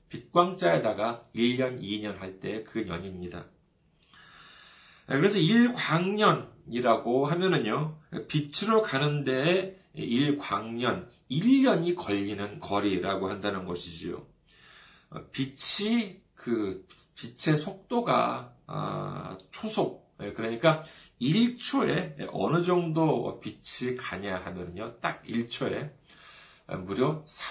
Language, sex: Korean, male